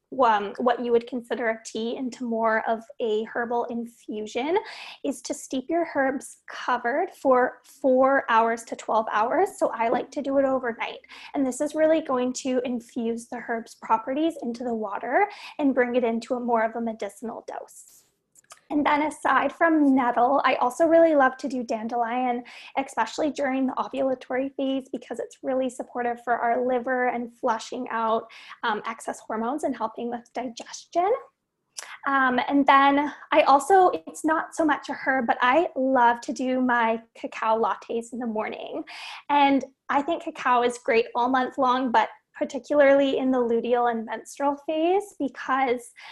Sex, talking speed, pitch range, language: female, 165 wpm, 235-280 Hz, English